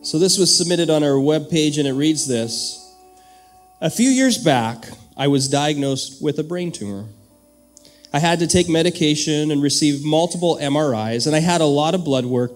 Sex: male